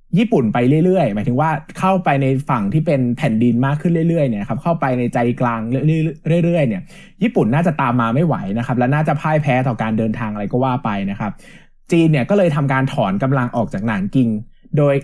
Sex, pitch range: male, 125-175 Hz